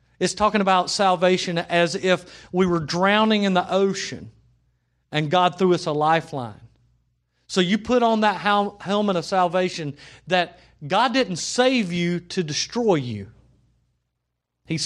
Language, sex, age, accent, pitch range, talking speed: English, male, 40-59, American, 115-175 Hz, 140 wpm